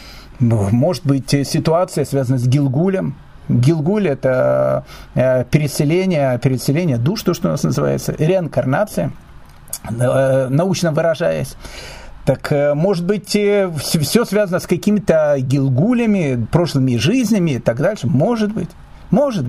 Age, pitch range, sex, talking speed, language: 50-69, 145-215 Hz, male, 110 wpm, Russian